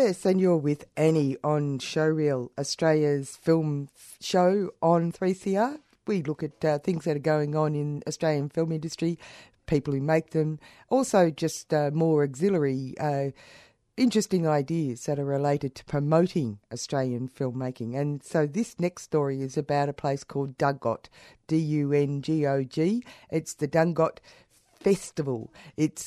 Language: English